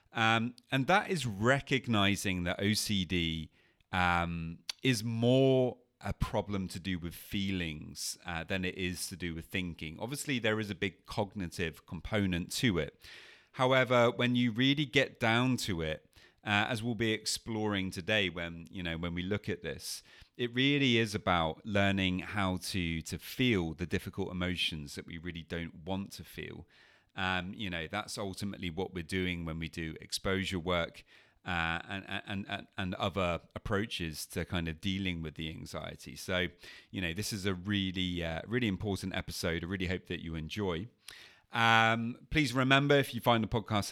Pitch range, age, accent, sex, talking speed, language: 85-110 Hz, 30-49, British, male, 170 wpm, English